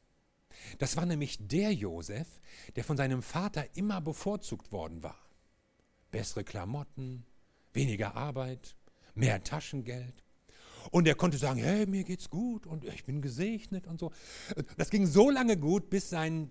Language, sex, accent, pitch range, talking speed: German, male, German, 135-185 Hz, 145 wpm